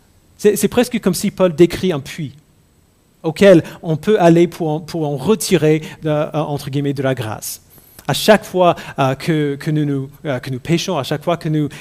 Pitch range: 135-185 Hz